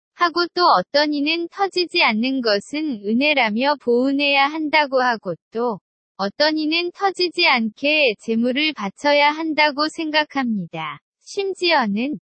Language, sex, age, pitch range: Korean, female, 20-39, 225-305 Hz